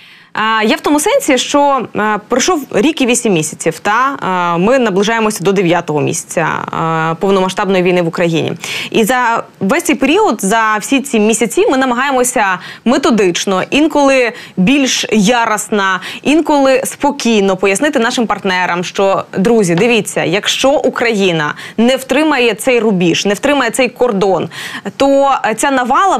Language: Ukrainian